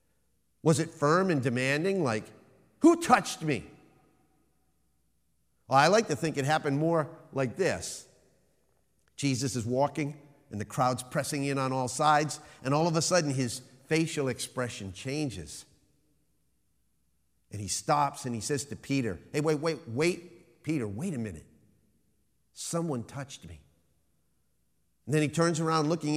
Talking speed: 145 wpm